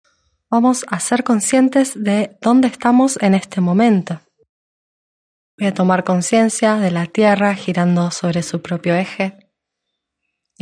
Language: Spanish